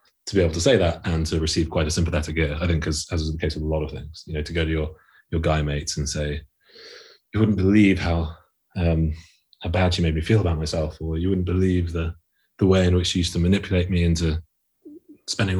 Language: English